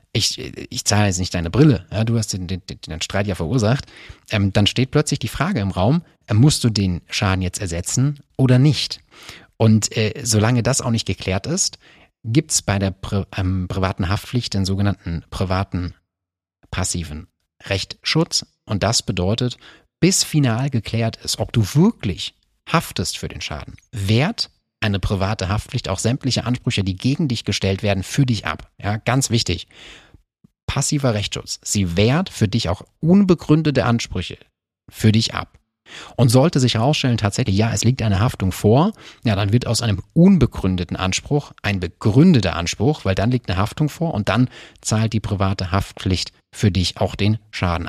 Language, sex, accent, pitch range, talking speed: German, male, German, 95-125 Hz, 165 wpm